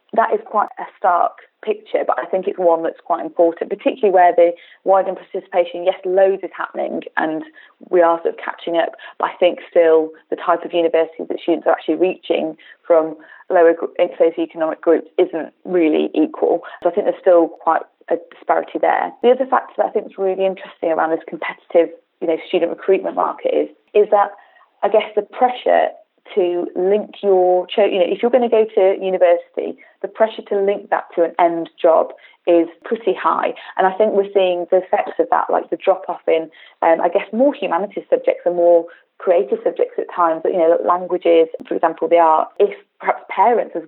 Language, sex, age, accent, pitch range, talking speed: English, female, 20-39, British, 170-200 Hz, 205 wpm